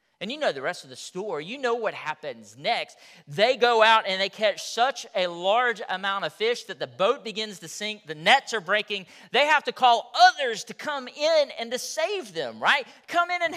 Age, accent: 40-59, American